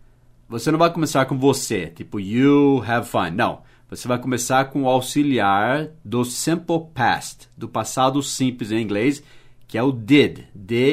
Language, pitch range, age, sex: English, 120-140 Hz, 40-59, male